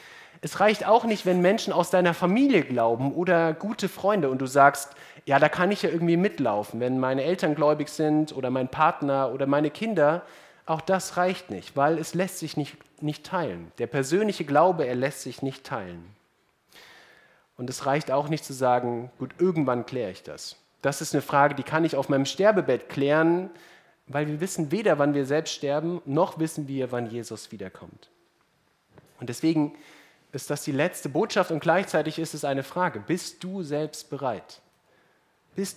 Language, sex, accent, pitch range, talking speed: German, male, German, 130-170 Hz, 180 wpm